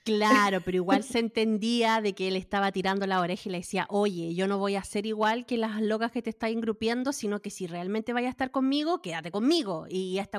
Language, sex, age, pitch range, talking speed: Spanish, female, 30-49, 195-265 Hz, 235 wpm